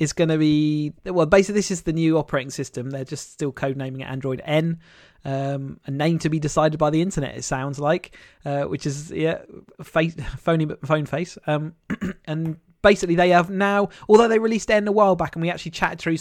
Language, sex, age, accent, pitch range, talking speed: English, male, 30-49, British, 135-165 Hz, 215 wpm